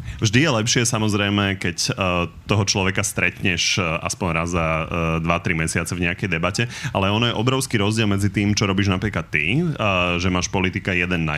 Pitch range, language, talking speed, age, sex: 95-110 Hz, Slovak, 170 wpm, 30-49, male